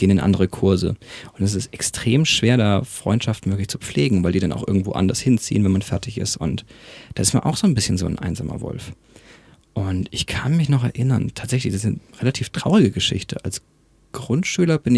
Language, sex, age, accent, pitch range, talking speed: German, male, 40-59, German, 100-125 Hz, 210 wpm